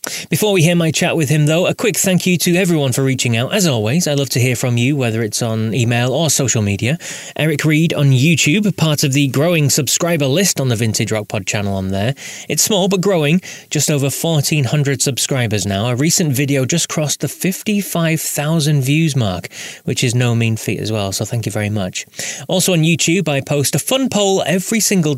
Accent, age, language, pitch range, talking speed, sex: British, 20-39, English, 115-160 Hz, 215 wpm, male